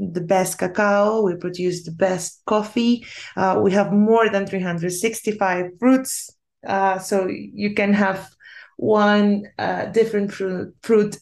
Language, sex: English, female